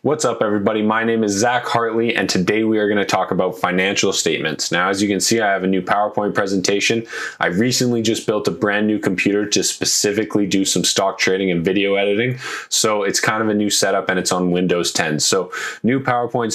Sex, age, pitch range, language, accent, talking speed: male, 10-29, 90-110 Hz, English, American, 220 wpm